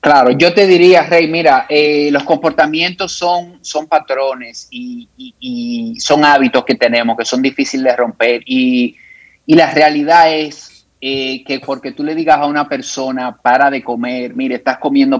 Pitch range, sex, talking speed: 130-160 Hz, male, 170 wpm